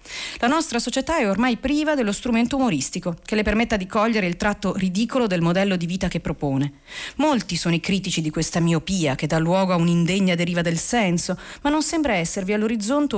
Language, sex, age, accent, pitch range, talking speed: Italian, female, 40-59, native, 170-230 Hz, 195 wpm